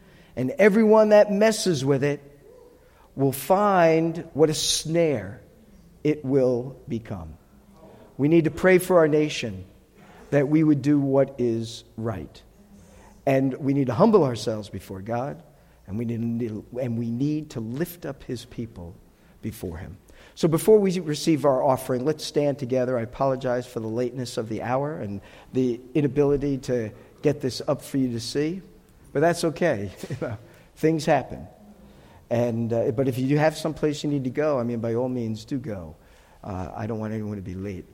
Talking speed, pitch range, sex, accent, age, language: 170 wpm, 110-150 Hz, male, American, 50-69, English